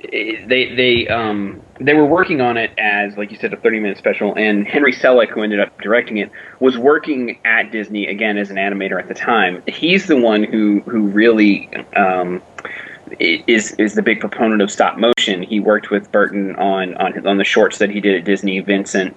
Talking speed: 205 wpm